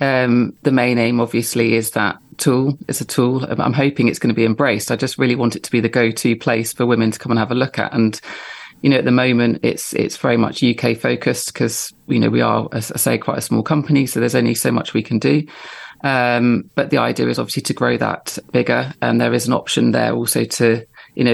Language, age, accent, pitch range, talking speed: English, 30-49, British, 115-145 Hz, 250 wpm